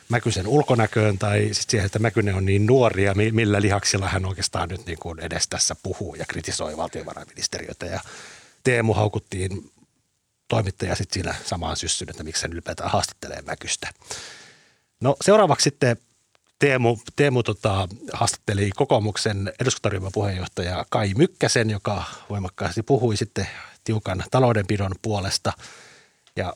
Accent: native